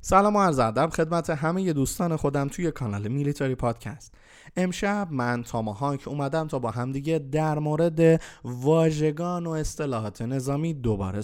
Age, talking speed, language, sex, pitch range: 20-39, 135 wpm, Persian, male, 115-155 Hz